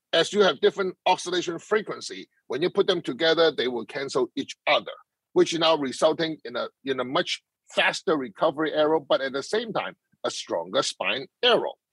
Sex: male